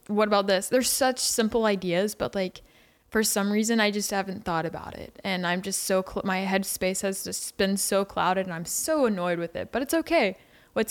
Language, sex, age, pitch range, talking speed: English, female, 20-39, 190-225 Hz, 215 wpm